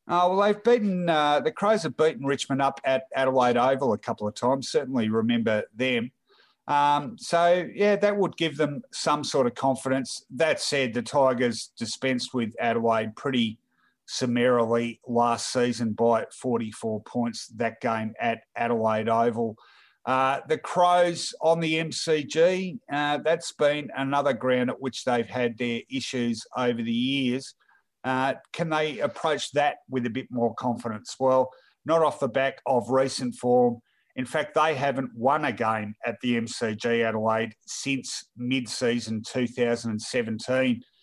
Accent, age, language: Australian, 50-69, English